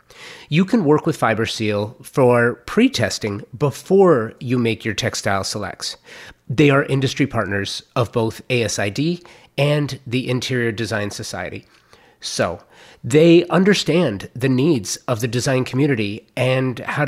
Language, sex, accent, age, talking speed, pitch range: English, male, American, 30-49, 125 wpm, 105-140 Hz